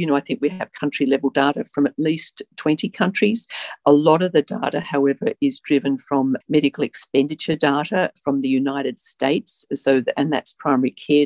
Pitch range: 135-170 Hz